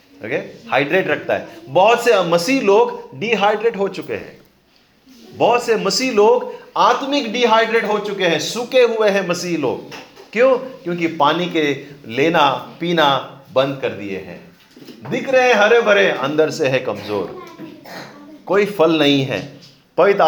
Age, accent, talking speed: 40-59, native, 150 wpm